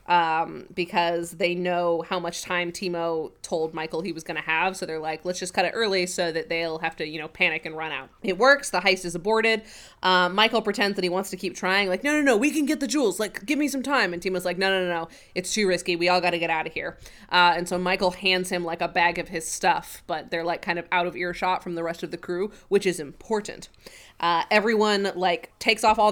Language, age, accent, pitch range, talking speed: English, 20-39, American, 170-195 Hz, 265 wpm